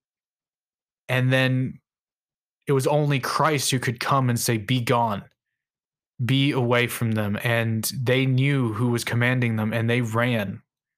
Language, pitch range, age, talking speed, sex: English, 115-130 Hz, 20-39, 150 wpm, male